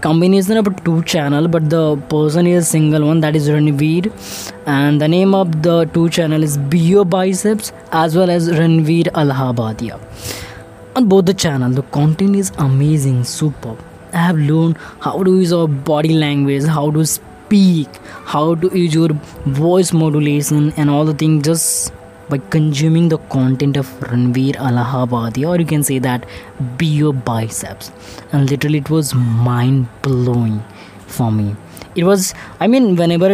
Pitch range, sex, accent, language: 135-170 Hz, female, Indian, English